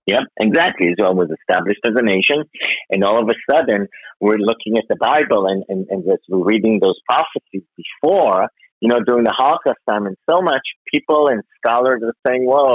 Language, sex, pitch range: English, male, 100-125 Hz